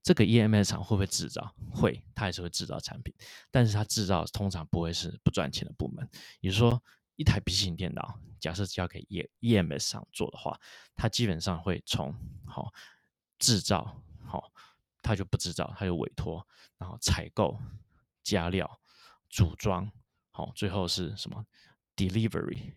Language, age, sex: Chinese, 20-39, male